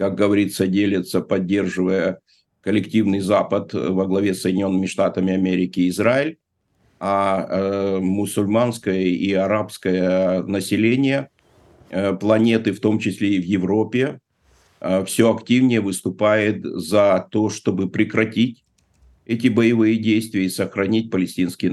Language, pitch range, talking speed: Russian, 95-115 Hz, 115 wpm